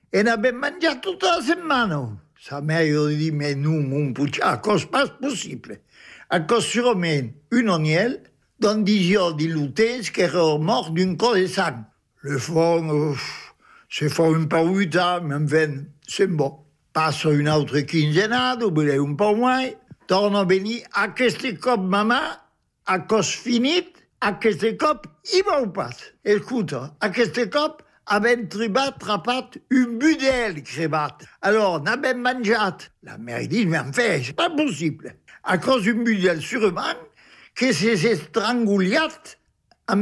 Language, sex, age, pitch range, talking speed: French, male, 60-79, 160-245 Hz, 110 wpm